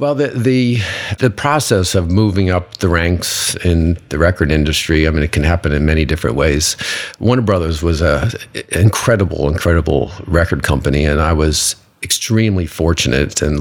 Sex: male